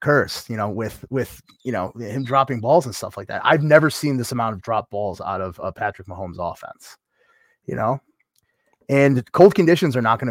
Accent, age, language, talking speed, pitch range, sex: American, 30-49, English, 210 wpm, 115-170 Hz, male